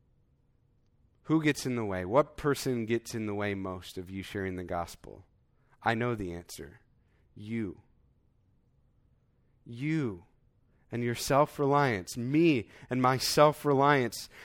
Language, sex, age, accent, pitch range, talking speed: English, male, 30-49, American, 110-145 Hz, 125 wpm